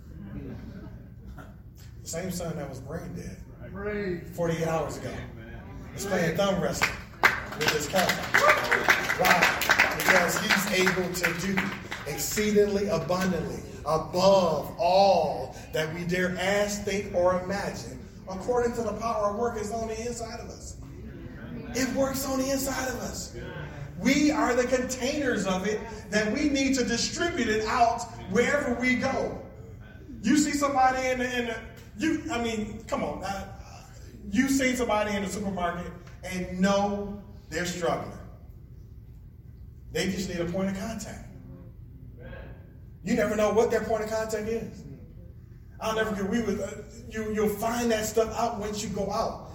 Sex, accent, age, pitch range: male, American, 30-49, 185-235 Hz